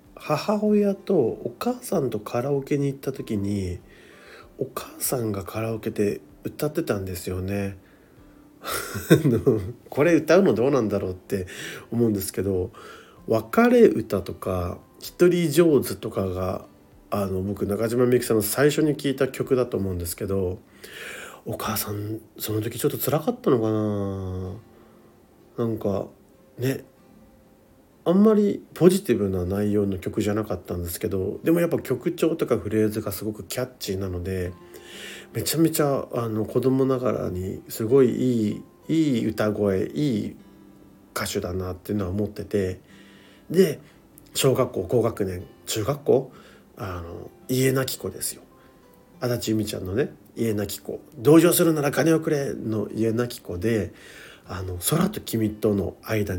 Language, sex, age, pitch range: Japanese, male, 40-59, 100-135 Hz